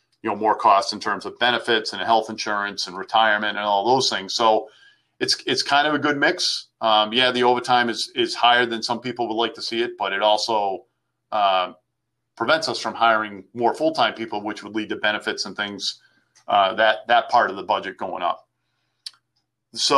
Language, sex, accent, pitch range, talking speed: English, male, American, 105-125 Hz, 205 wpm